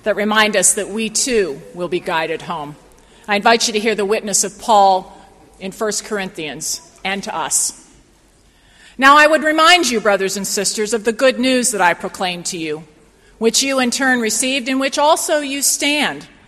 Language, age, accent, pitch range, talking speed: English, 40-59, American, 190-270 Hz, 190 wpm